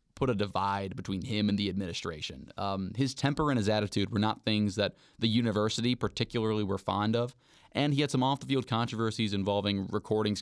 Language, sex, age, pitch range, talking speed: English, male, 20-39, 100-130 Hz, 185 wpm